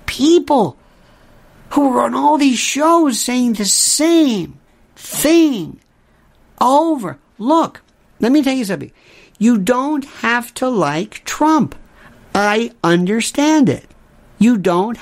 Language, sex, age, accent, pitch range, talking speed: English, male, 60-79, American, 190-280 Hz, 110 wpm